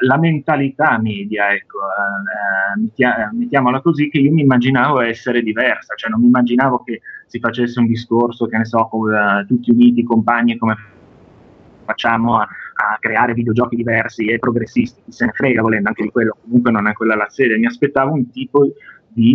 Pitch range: 115-145 Hz